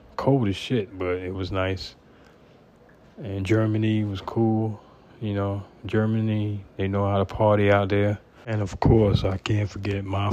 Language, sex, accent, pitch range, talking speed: English, male, American, 95-110 Hz, 165 wpm